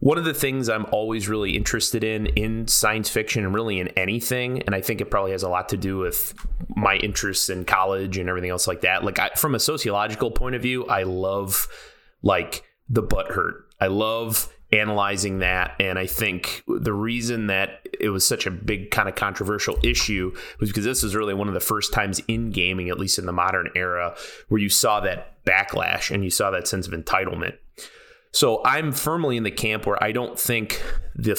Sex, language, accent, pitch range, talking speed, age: male, English, American, 95-115 Hz, 205 wpm, 30-49